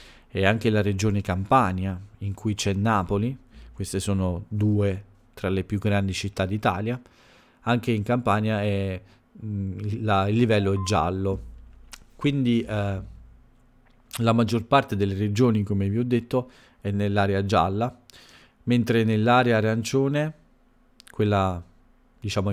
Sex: male